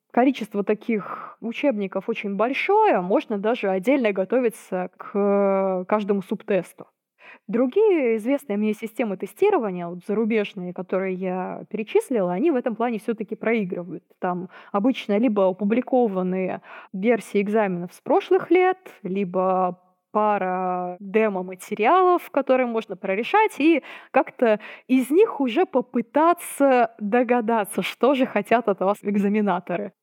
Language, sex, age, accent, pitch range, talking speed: Russian, female, 20-39, native, 195-265 Hz, 110 wpm